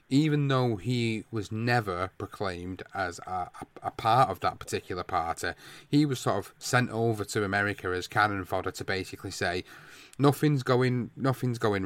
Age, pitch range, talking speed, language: 30-49, 95-125 Hz, 160 wpm, English